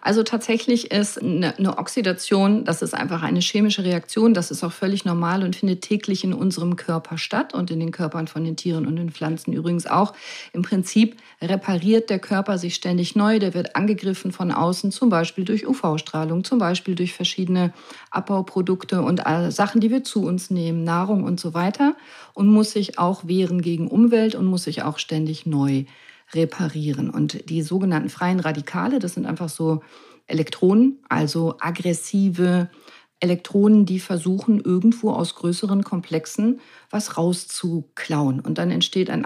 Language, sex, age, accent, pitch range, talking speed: German, female, 40-59, German, 165-210 Hz, 165 wpm